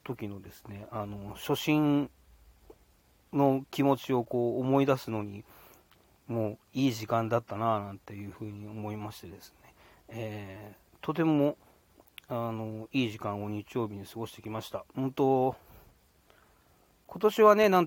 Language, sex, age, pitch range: Japanese, male, 40-59, 105-130 Hz